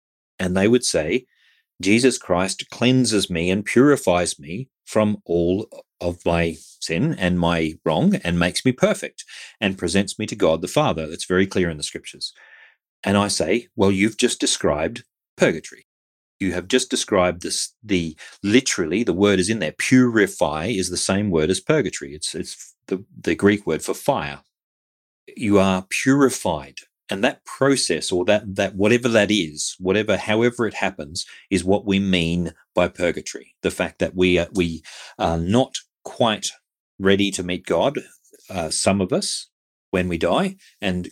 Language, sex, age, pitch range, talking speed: English, male, 40-59, 85-115 Hz, 165 wpm